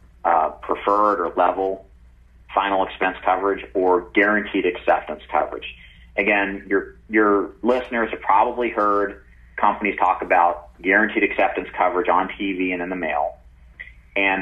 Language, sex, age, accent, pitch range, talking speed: English, male, 40-59, American, 85-105 Hz, 130 wpm